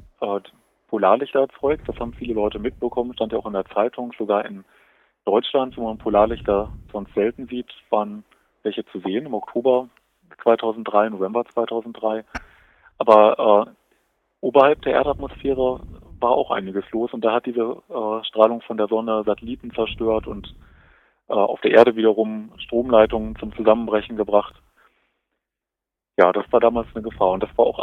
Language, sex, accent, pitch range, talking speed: German, male, German, 105-120 Hz, 155 wpm